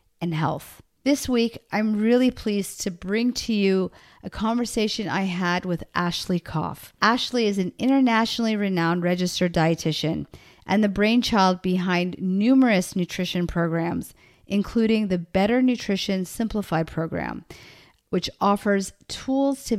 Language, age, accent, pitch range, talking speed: English, 40-59, American, 180-220 Hz, 125 wpm